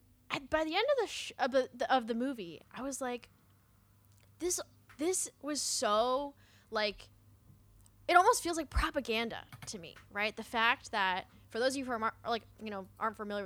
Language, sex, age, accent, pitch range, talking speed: English, female, 10-29, American, 200-260 Hz, 180 wpm